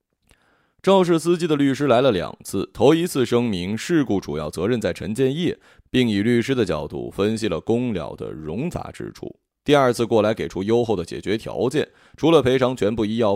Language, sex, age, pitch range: Chinese, male, 20-39, 100-150 Hz